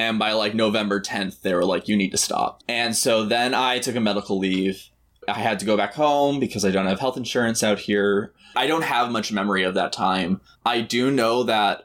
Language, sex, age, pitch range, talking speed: English, male, 20-39, 100-120 Hz, 235 wpm